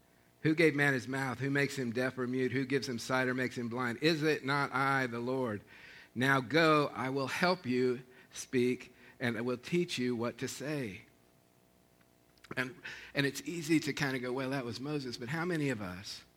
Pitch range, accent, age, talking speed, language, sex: 120-150 Hz, American, 50-69, 210 wpm, English, male